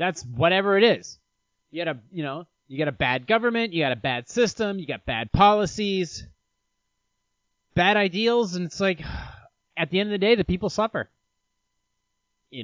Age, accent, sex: 30-49, American, male